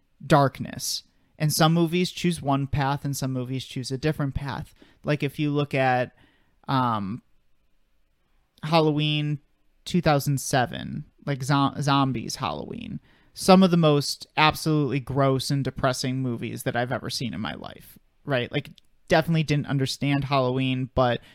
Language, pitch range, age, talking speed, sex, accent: English, 125-145 Hz, 30-49, 140 wpm, male, American